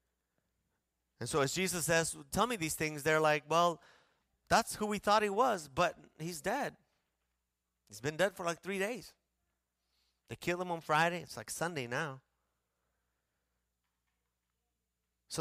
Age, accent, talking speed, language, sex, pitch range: 30-49, American, 150 wpm, English, male, 135-225 Hz